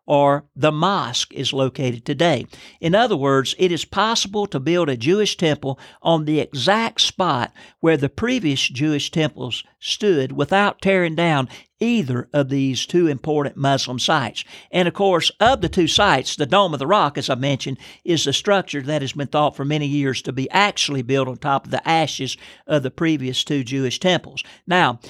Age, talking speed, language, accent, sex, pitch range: 60-79, 185 wpm, English, American, male, 135-180 Hz